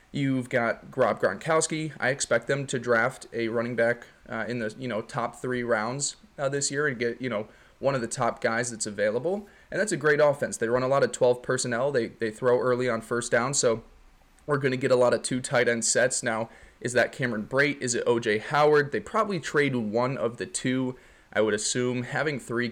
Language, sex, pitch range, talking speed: English, male, 115-140 Hz, 225 wpm